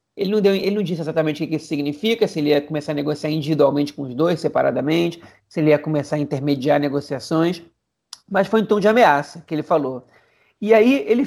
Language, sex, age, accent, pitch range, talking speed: Portuguese, male, 40-59, Brazilian, 155-210 Hz, 225 wpm